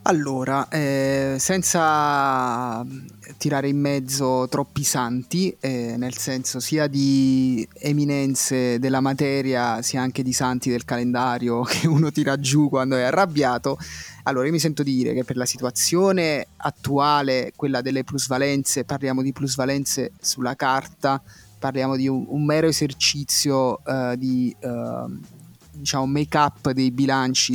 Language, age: Italian, 30-49